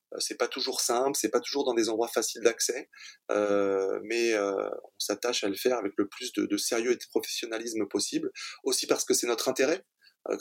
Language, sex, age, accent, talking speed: French, male, 20-39, French, 215 wpm